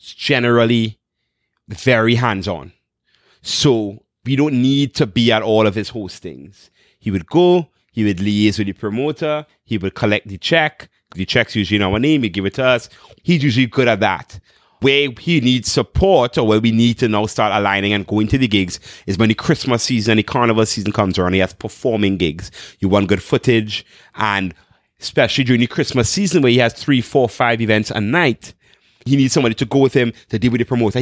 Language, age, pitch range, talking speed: English, 30-49, 100-125 Hz, 205 wpm